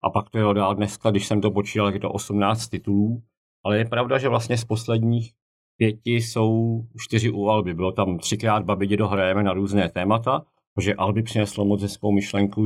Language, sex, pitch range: Czech, male, 95-110 Hz